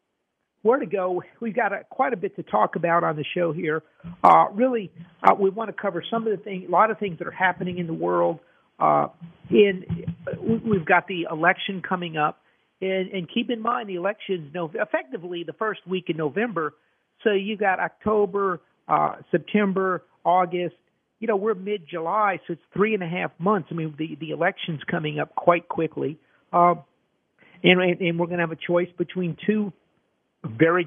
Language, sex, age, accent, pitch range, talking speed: English, male, 50-69, American, 165-195 Hz, 190 wpm